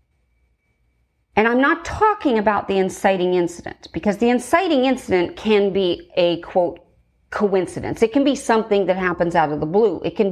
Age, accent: 40-59, American